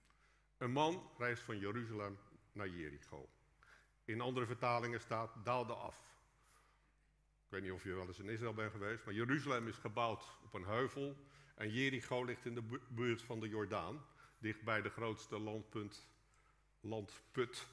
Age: 50-69